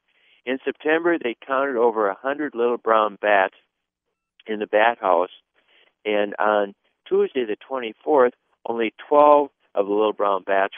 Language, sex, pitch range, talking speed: English, male, 100-120 Hz, 140 wpm